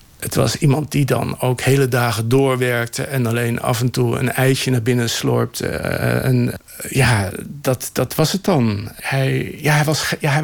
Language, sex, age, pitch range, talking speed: Dutch, male, 50-69, 120-155 Hz, 150 wpm